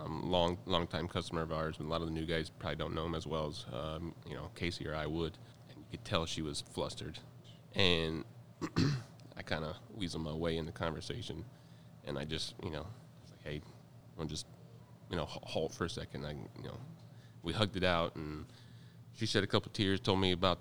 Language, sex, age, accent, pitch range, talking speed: English, male, 30-49, American, 80-105 Hz, 225 wpm